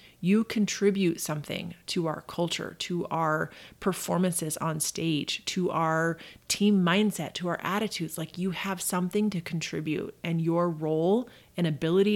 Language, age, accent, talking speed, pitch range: English, 30-49, American, 145 wpm, 160-200 Hz